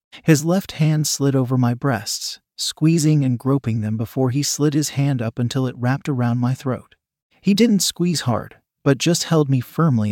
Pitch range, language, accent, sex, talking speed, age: 125-150 Hz, English, American, male, 190 wpm, 40-59